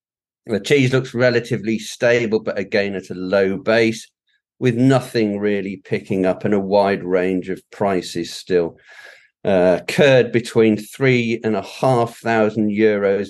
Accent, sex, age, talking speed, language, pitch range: British, male, 40-59, 145 wpm, English, 105-160 Hz